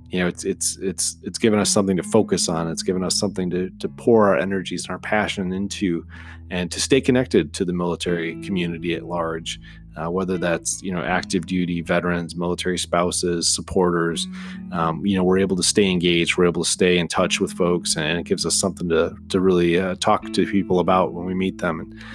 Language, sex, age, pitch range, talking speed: English, male, 30-49, 85-100 Hz, 215 wpm